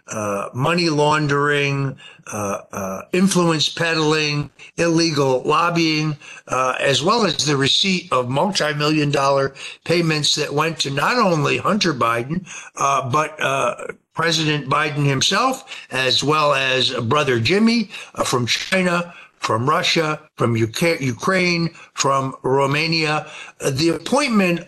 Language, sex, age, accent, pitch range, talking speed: English, male, 60-79, American, 140-170 Hz, 120 wpm